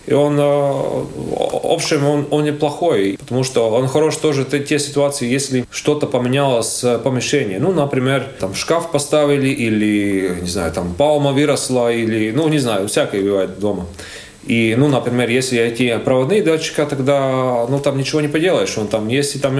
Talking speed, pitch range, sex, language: 170 wpm, 110-145 Hz, male, Russian